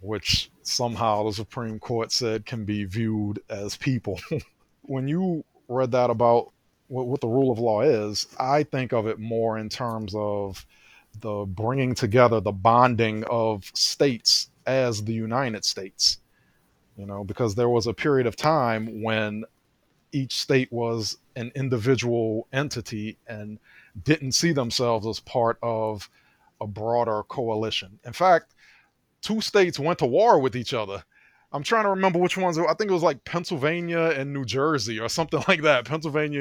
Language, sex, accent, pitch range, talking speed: English, male, American, 110-140 Hz, 160 wpm